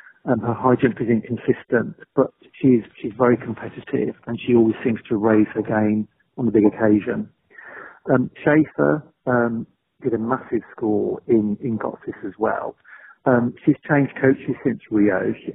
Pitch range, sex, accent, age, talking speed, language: 110-125 Hz, male, British, 40-59, 160 wpm, English